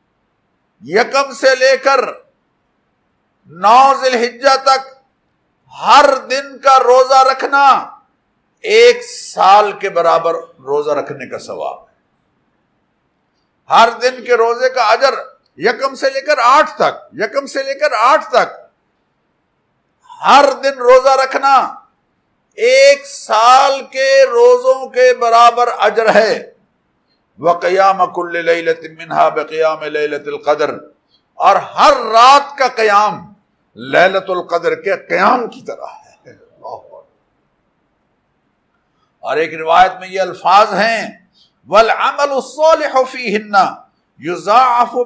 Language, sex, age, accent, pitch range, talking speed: English, male, 50-69, Indian, 205-270 Hz, 100 wpm